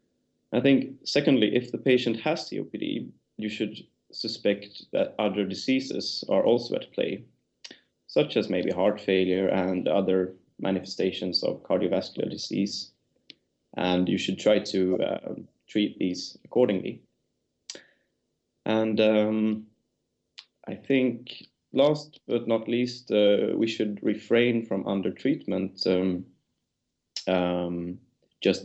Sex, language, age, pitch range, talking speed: male, English, 30-49, 95-110 Hz, 115 wpm